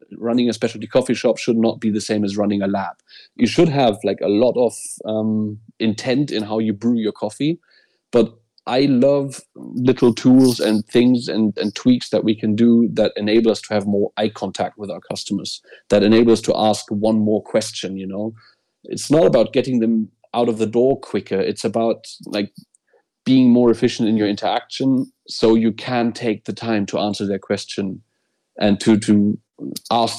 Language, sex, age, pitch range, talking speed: English, male, 30-49, 105-115 Hz, 195 wpm